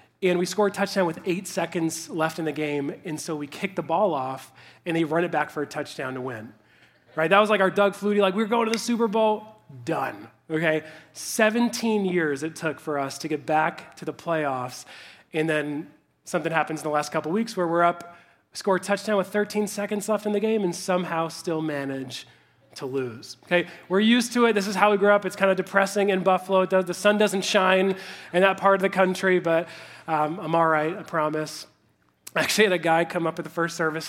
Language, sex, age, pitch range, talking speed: English, male, 20-39, 155-200 Hz, 230 wpm